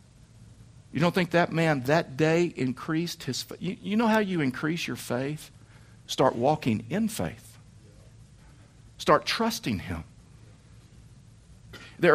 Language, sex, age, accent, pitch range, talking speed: English, male, 50-69, American, 120-175 Hz, 130 wpm